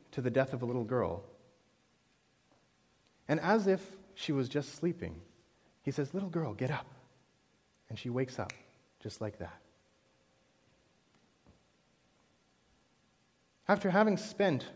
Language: English